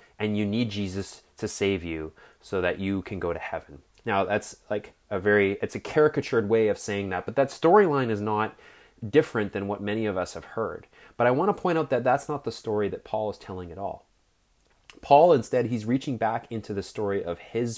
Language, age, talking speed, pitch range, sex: English, 30-49, 225 wpm, 100-120 Hz, male